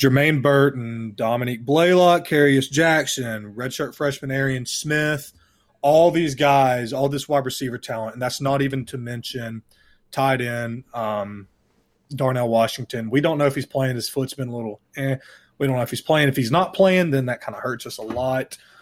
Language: English